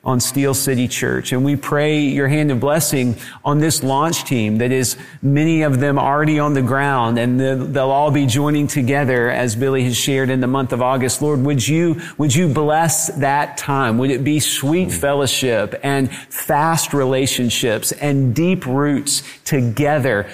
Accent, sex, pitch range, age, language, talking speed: American, male, 125-150 Hz, 40-59, English, 175 wpm